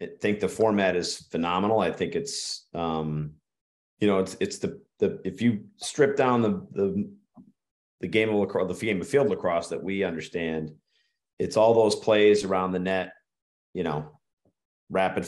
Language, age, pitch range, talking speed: English, 40-59, 85-105 Hz, 175 wpm